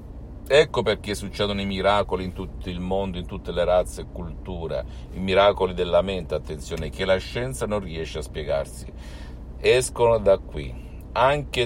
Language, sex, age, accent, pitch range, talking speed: Italian, male, 50-69, native, 75-105 Hz, 160 wpm